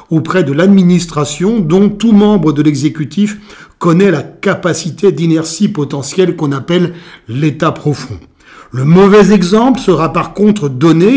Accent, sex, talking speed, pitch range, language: French, male, 130 wpm, 155-205 Hz, French